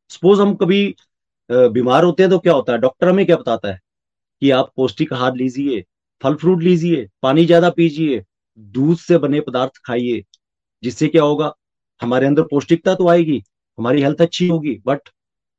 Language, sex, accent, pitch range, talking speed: Hindi, male, native, 125-165 Hz, 170 wpm